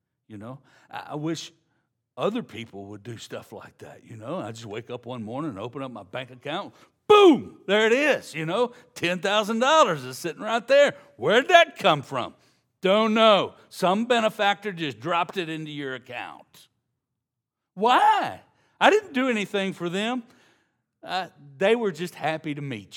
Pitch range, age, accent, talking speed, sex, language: 125-190 Hz, 60-79, American, 165 wpm, male, English